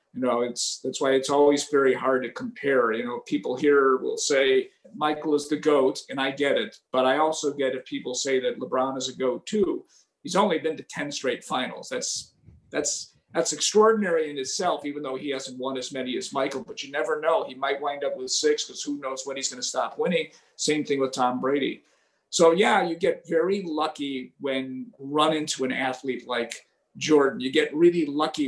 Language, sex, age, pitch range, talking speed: English, male, 50-69, 130-175 Hz, 215 wpm